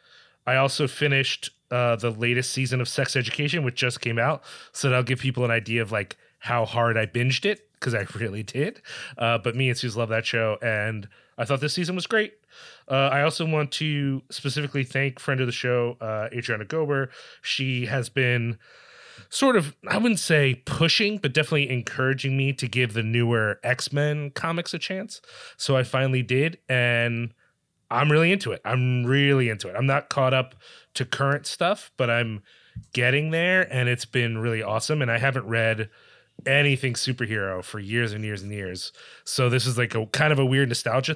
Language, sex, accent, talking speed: English, male, American, 190 wpm